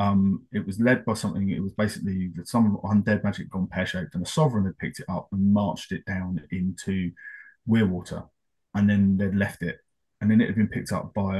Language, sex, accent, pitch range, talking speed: English, male, British, 95-110 Hz, 210 wpm